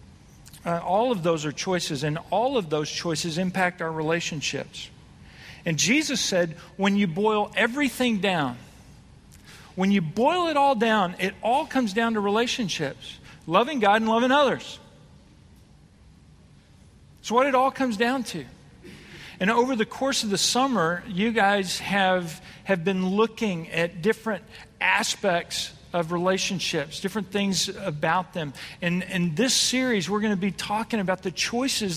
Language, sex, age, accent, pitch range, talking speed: English, male, 50-69, American, 170-220 Hz, 150 wpm